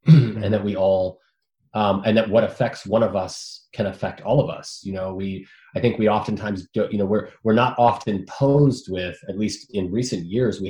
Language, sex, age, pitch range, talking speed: English, male, 20-39, 90-105 Hz, 220 wpm